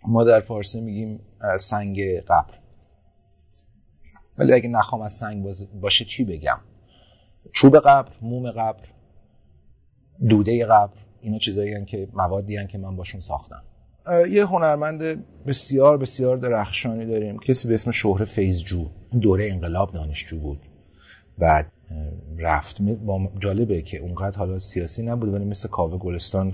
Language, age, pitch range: Persian, 30-49, 90-115 Hz